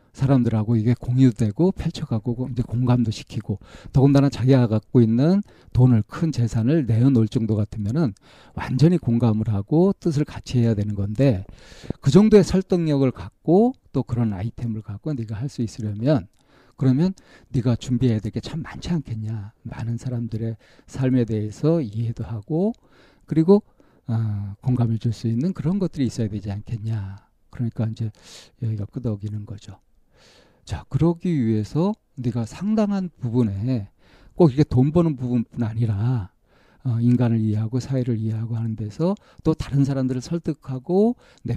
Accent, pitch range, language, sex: native, 110-145 Hz, Korean, male